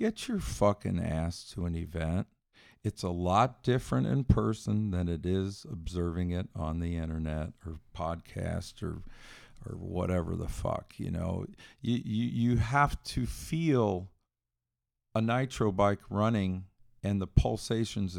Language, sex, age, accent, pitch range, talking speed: English, male, 50-69, American, 95-120 Hz, 140 wpm